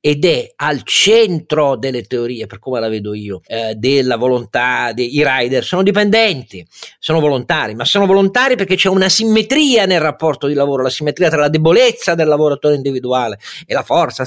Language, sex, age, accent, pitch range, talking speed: Italian, male, 40-59, native, 125-180 Hz, 175 wpm